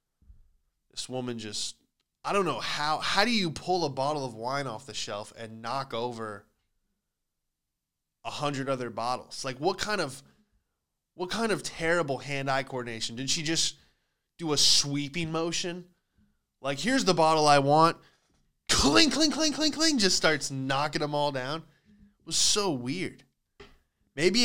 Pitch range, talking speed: 115-160 Hz, 160 wpm